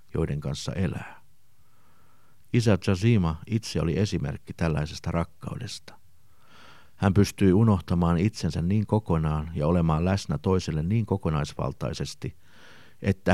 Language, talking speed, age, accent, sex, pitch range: Finnish, 105 wpm, 50-69, native, male, 80-100 Hz